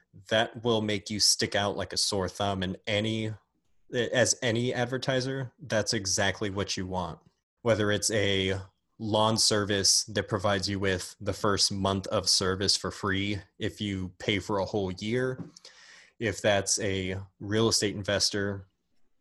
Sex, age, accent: male, 20-39, American